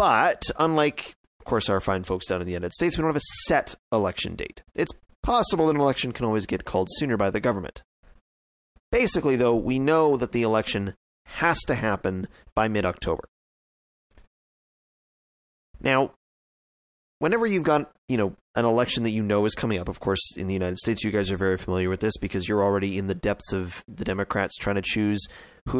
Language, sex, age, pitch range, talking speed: English, male, 30-49, 95-135 Hz, 195 wpm